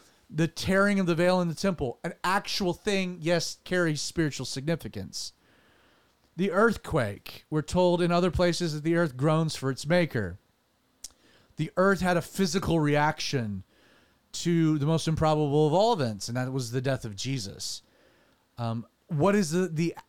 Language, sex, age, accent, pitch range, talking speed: English, male, 30-49, American, 140-180 Hz, 160 wpm